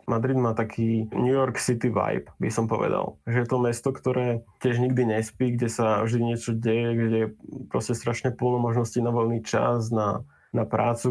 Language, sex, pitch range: Slovak, male, 110-120 Hz